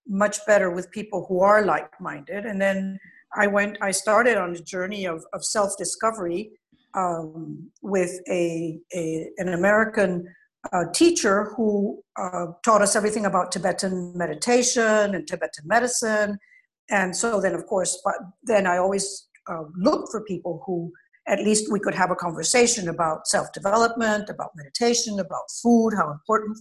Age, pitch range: 60-79, 185-230 Hz